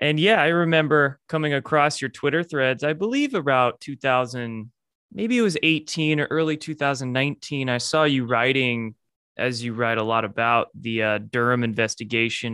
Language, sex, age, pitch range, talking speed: English, male, 20-39, 115-135 Hz, 165 wpm